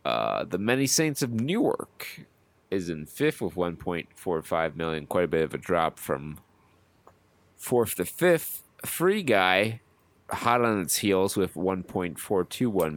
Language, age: English, 30-49